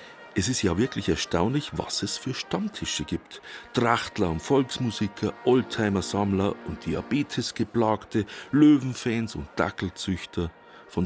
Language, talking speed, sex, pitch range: German, 110 wpm, male, 95-125 Hz